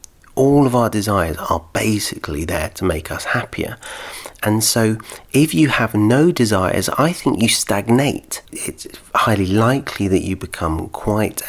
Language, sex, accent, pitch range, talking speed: English, male, British, 85-105 Hz, 150 wpm